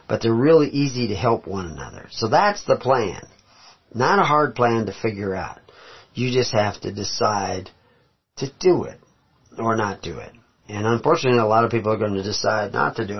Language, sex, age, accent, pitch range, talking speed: English, male, 40-59, American, 105-125 Hz, 200 wpm